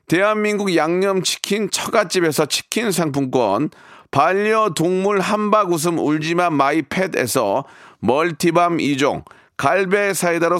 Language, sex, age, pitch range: Korean, male, 40-59, 155-205 Hz